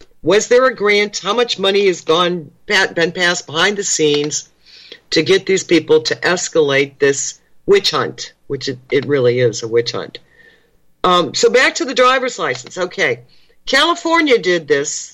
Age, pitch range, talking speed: 60-79, 140-240 Hz, 165 wpm